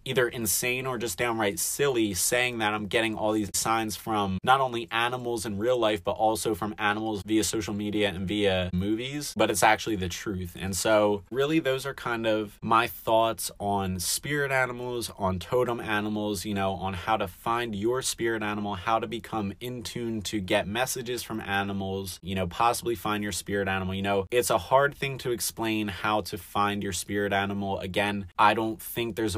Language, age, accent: English, 30-49, American